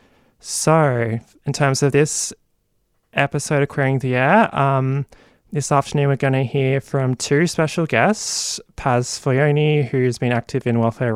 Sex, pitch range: male, 120-145 Hz